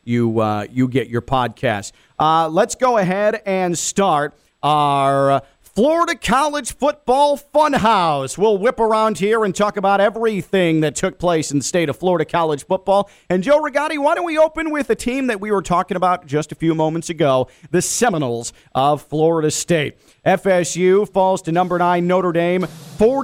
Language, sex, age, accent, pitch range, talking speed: English, male, 40-59, American, 160-205 Hz, 175 wpm